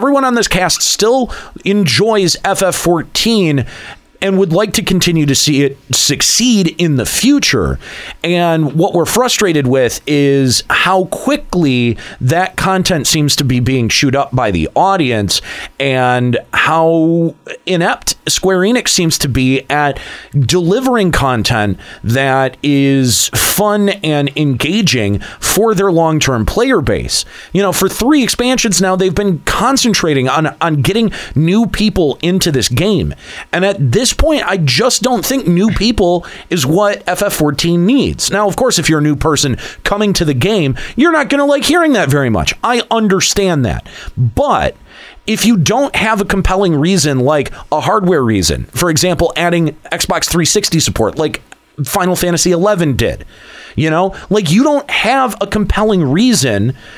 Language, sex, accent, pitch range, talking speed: English, male, American, 140-205 Hz, 155 wpm